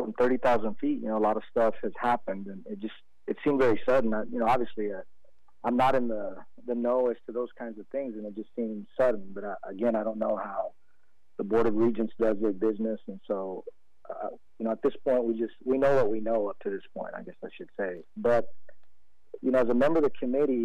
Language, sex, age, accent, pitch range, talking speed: English, male, 40-59, American, 105-125 Hz, 250 wpm